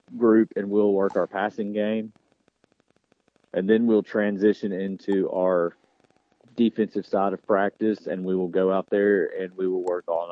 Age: 30-49